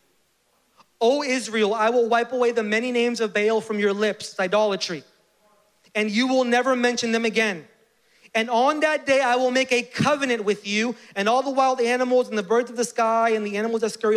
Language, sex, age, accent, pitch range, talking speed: English, male, 30-49, American, 225-280 Hz, 205 wpm